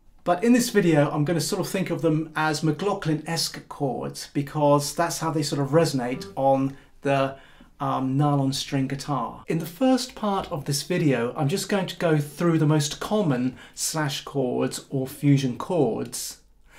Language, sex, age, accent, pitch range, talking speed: English, male, 40-59, British, 140-170 Hz, 175 wpm